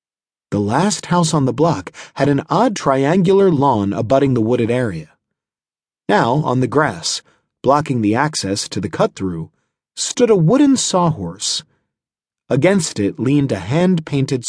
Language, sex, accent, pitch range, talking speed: English, male, American, 110-160 Hz, 140 wpm